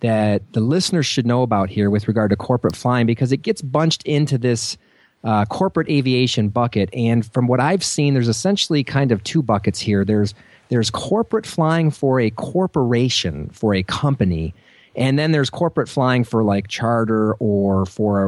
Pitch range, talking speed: 105-140 Hz, 175 wpm